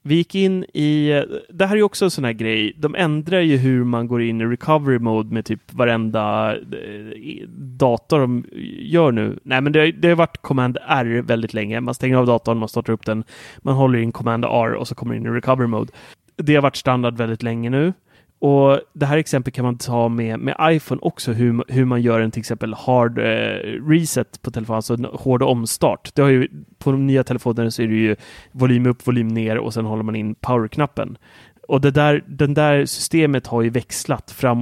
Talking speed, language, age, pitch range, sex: 215 wpm, Swedish, 30-49, 115-140 Hz, male